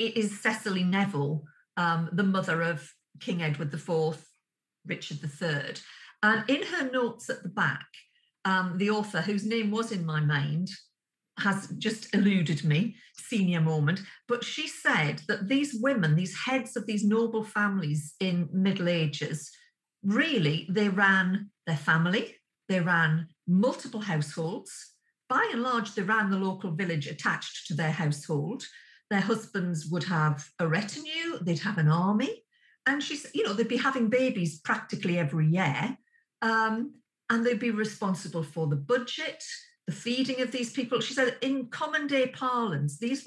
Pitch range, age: 170-235 Hz, 50-69